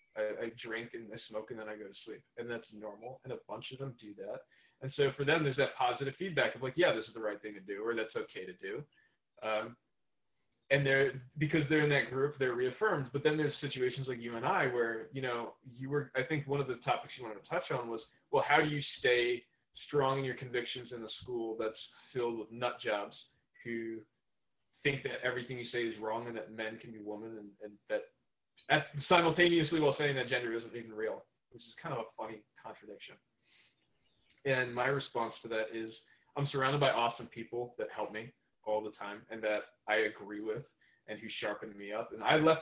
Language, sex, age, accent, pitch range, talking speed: English, male, 20-39, American, 110-140 Hz, 225 wpm